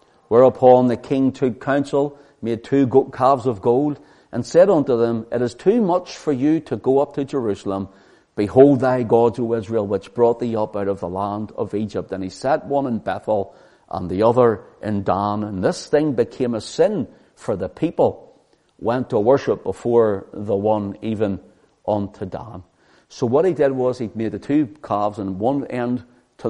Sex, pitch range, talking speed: male, 100-130 Hz, 190 wpm